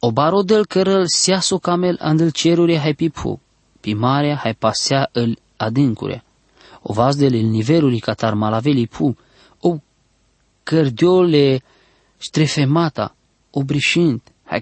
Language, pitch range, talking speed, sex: English, 120-160 Hz, 105 wpm, male